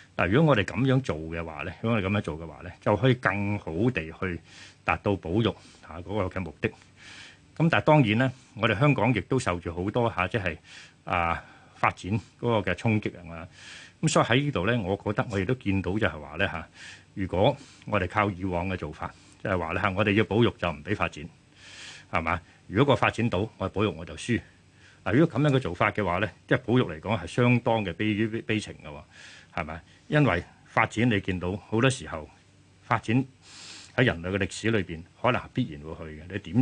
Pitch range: 90-115 Hz